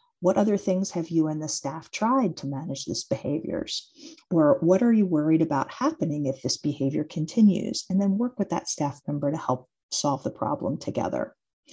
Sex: female